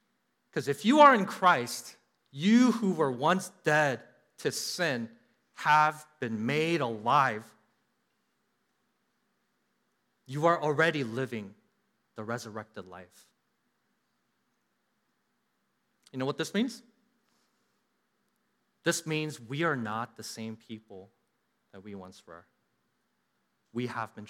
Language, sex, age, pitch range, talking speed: English, male, 30-49, 125-200 Hz, 110 wpm